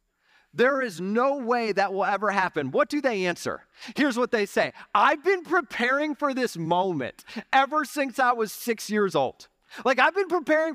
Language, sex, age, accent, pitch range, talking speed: English, male, 30-49, American, 180-265 Hz, 185 wpm